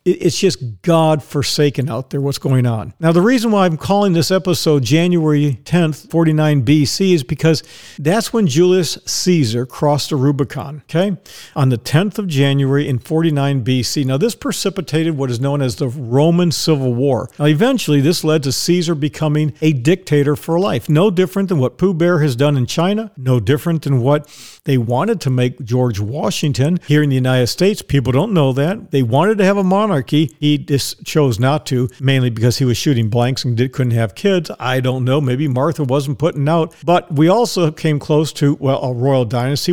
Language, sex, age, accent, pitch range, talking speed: English, male, 50-69, American, 135-175 Hz, 195 wpm